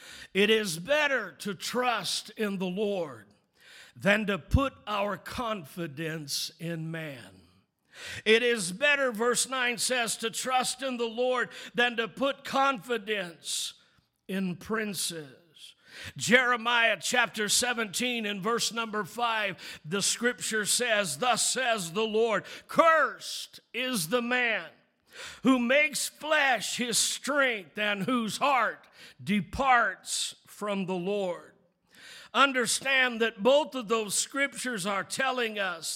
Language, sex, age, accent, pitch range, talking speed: English, male, 50-69, American, 205-260 Hz, 120 wpm